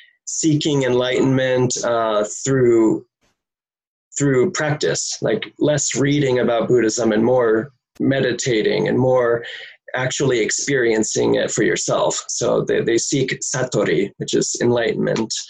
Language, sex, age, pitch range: English, male, 20-39, 115-155 Hz